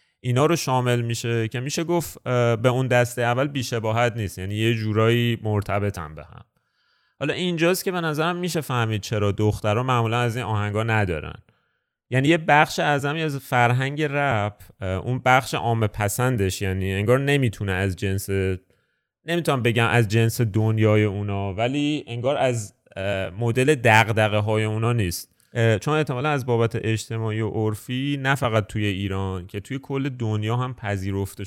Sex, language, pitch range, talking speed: male, Persian, 100-125 Hz, 160 wpm